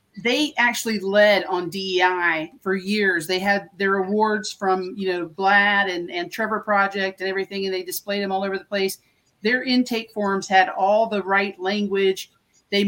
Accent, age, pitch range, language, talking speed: American, 40-59, 185-215 Hz, English, 175 wpm